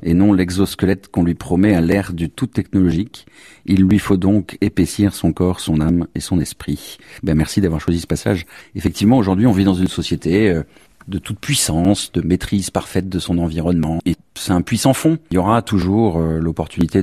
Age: 40-59